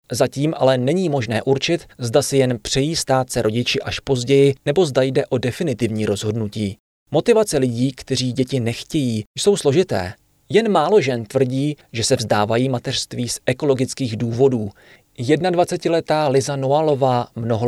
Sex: male